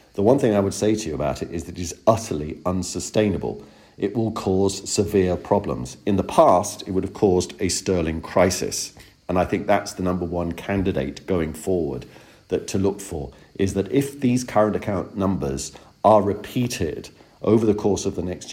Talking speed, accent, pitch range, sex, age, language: 190 wpm, British, 85-105 Hz, male, 50-69, English